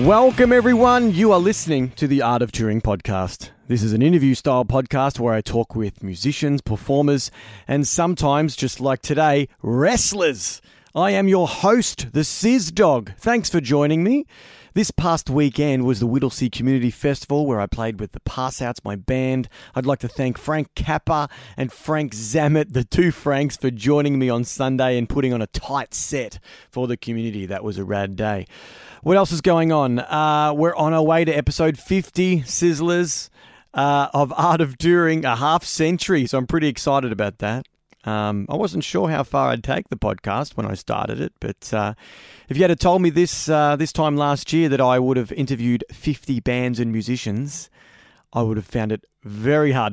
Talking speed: 190 wpm